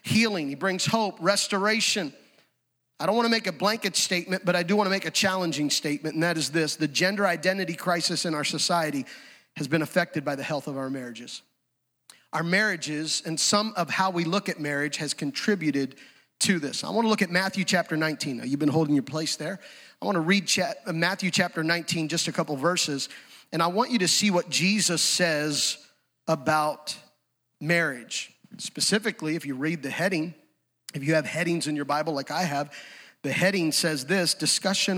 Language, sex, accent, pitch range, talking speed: English, male, American, 150-190 Hz, 195 wpm